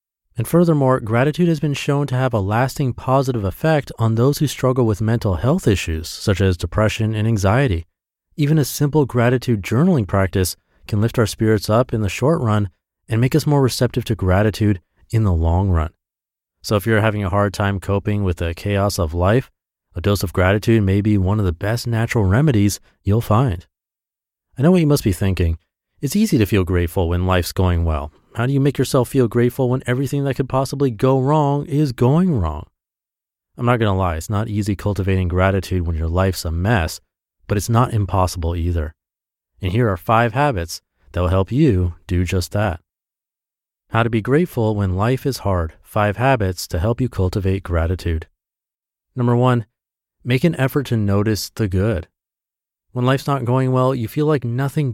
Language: English